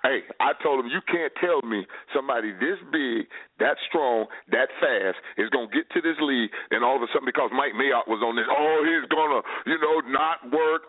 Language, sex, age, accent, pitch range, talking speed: English, male, 40-59, American, 170-280 Hz, 225 wpm